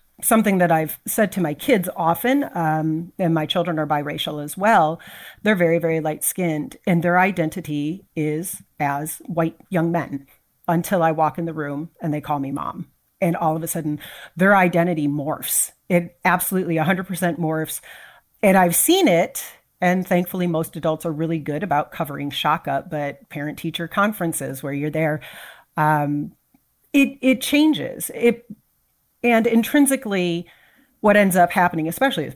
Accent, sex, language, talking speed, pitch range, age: American, female, English, 160 wpm, 155-200 Hz, 40-59